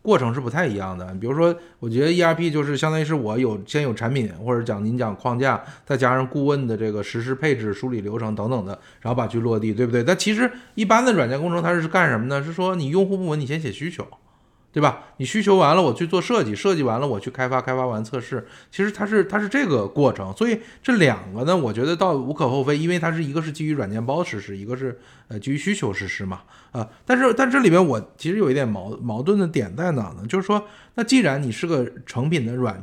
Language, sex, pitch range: Chinese, male, 115-170 Hz